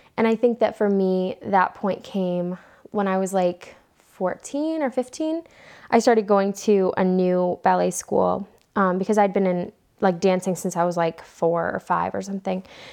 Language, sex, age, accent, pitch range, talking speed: English, female, 10-29, American, 180-215 Hz, 185 wpm